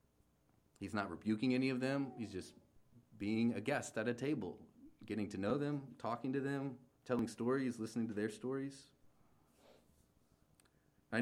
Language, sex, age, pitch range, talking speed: English, male, 30-49, 90-120 Hz, 150 wpm